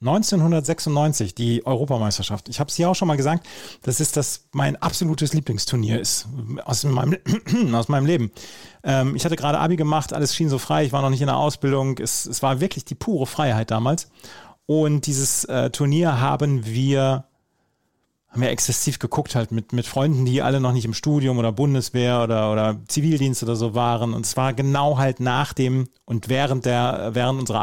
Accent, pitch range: German, 115-145 Hz